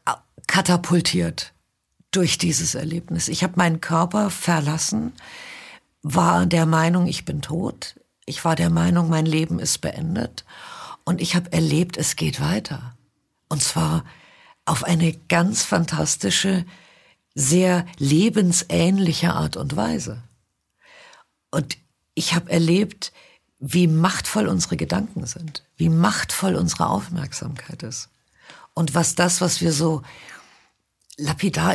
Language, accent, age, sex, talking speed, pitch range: German, German, 50-69, female, 115 wpm, 145-180 Hz